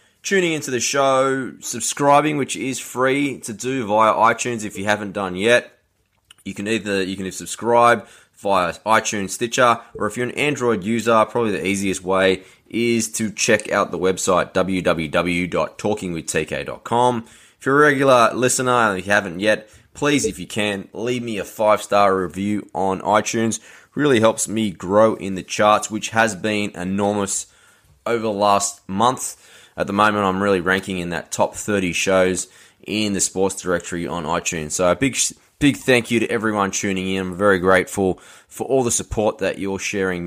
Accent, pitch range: Australian, 95-120 Hz